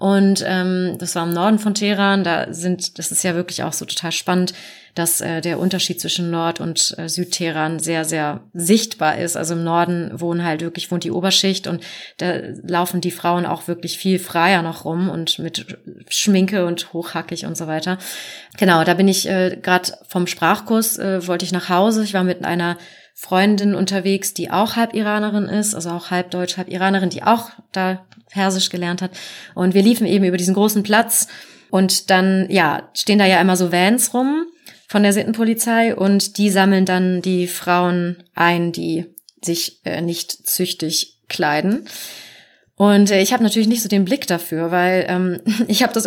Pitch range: 175-205 Hz